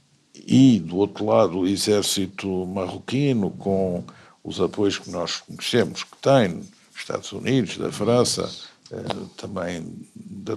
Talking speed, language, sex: 120 wpm, Portuguese, male